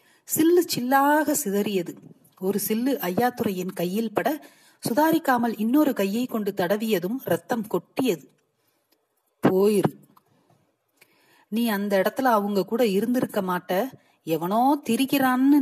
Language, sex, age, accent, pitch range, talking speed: Tamil, female, 30-49, native, 190-250 Hz, 95 wpm